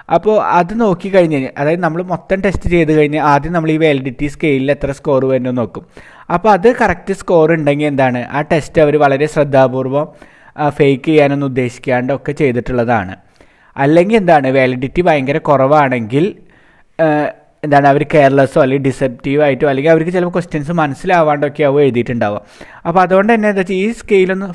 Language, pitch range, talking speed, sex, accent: Malayalam, 140-180 Hz, 145 wpm, male, native